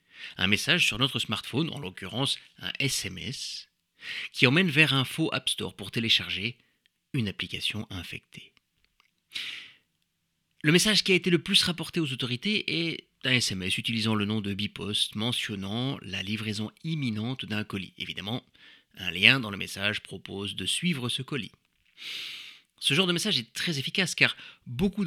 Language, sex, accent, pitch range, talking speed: French, male, French, 100-150 Hz, 155 wpm